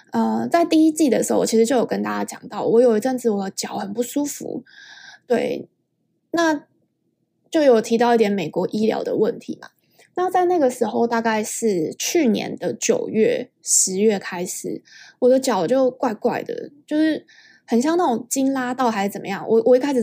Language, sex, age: Chinese, female, 20-39